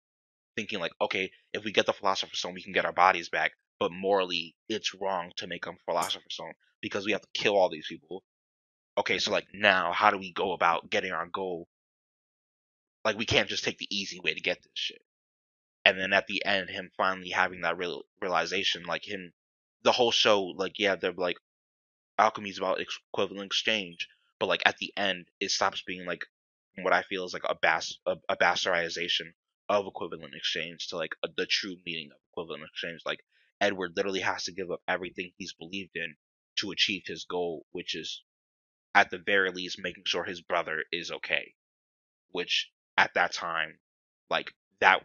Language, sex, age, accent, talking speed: English, male, 20-39, American, 190 wpm